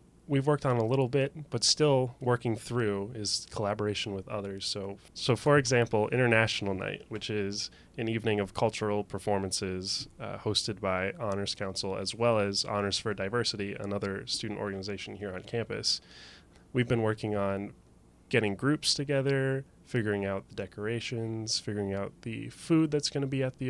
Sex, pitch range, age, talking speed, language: male, 100-120 Hz, 20-39, 165 wpm, English